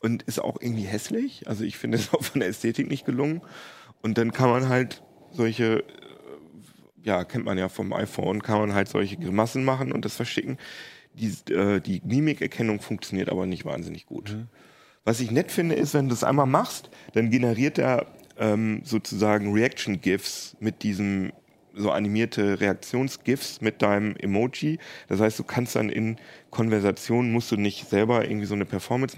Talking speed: 170 wpm